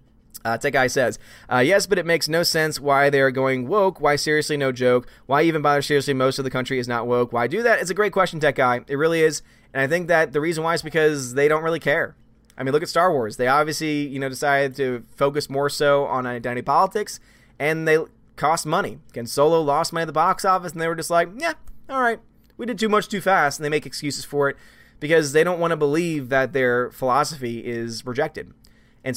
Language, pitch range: English, 125-165 Hz